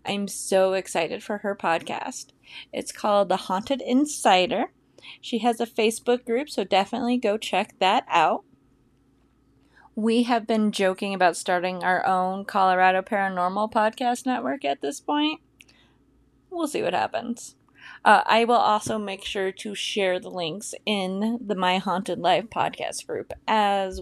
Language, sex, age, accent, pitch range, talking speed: English, female, 30-49, American, 195-260 Hz, 145 wpm